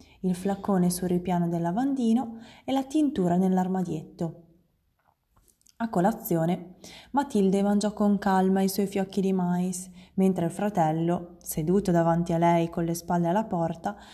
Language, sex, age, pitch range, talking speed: Italian, female, 20-39, 175-225 Hz, 140 wpm